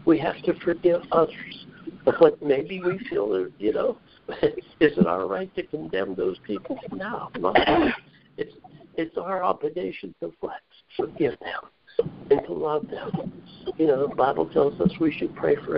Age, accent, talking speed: 60-79, American, 165 wpm